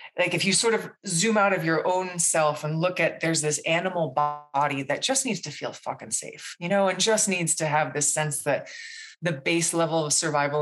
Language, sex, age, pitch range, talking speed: English, female, 20-39, 145-180 Hz, 225 wpm